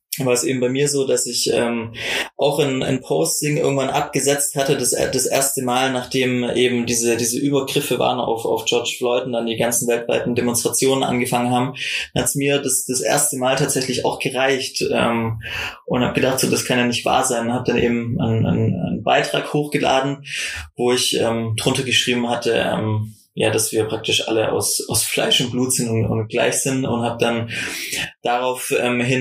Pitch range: 120-135 Hz